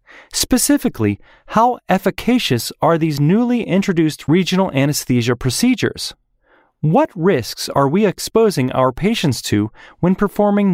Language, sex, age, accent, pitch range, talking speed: English, male, 30-49, American, 135-205 Hz, 110 wpm